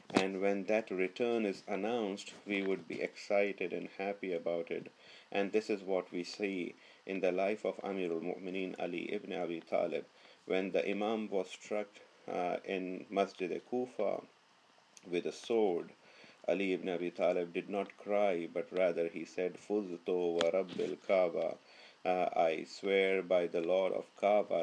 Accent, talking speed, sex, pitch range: Indian, 155 wpm, male, 90-105 Hz